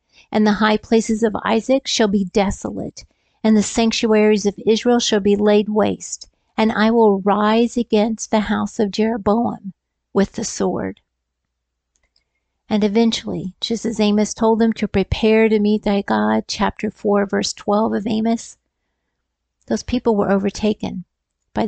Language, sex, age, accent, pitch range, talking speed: English, female, 50-69, American, 195-225 Hz, 150 wpm